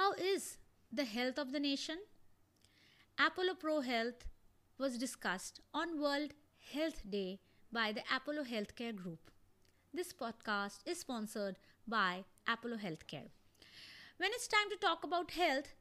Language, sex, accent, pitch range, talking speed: English, female, Indian, 205-320 Hz, 135 wpm